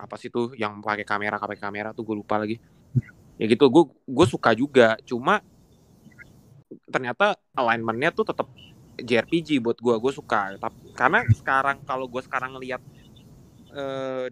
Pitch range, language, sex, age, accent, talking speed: 110-135 Hz, Indonesian, male, 20-39, native, 145 wpm